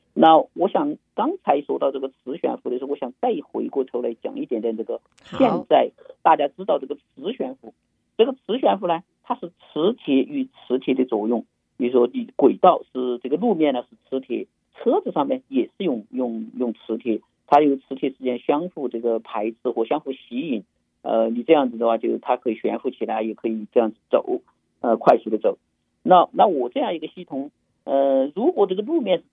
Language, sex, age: Chinese, male, 50-69